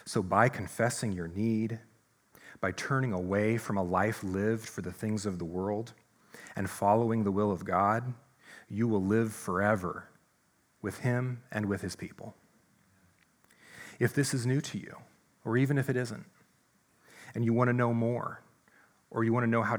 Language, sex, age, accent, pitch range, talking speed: English, male, 40-59, American, 100-120 Hz, 165 wpm